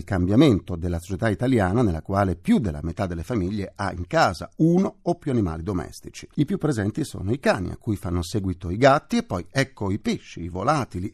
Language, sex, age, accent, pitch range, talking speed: Italian, male, 50-69, native, 90-130 Hz, 205 wpm